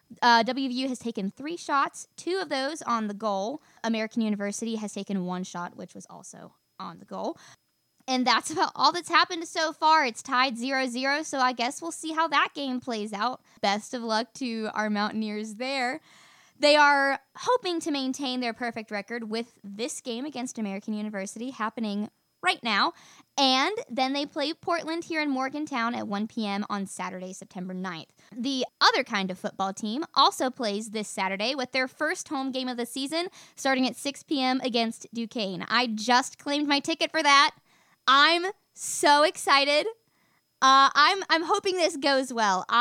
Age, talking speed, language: 20-39, 175 wpm, English